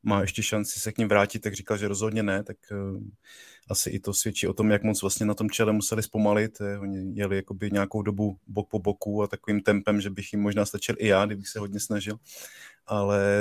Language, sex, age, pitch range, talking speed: Czech, male, 20-39, 100-110 Hz, 225 wpm